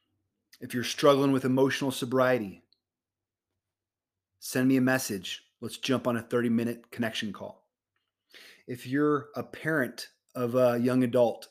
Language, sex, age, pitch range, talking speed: English, male, 30-49, 100-125 Hz, 135 wpm